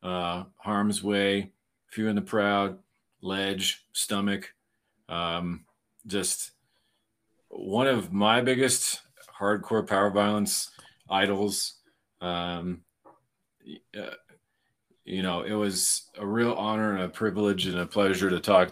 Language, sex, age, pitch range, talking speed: English, male, 40-59, 90-105 Hz, 115 wpm